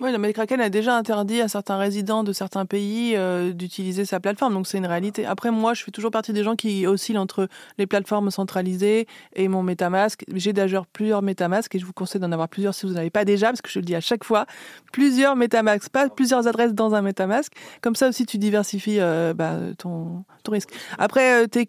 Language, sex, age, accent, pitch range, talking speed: French, female, 30-49, French, 200-245 Hz, 230 wpm